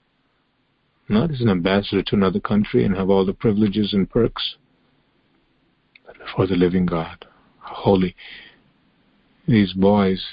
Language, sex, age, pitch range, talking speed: English, male, 50-69, 95-120 Hz, 130 wpm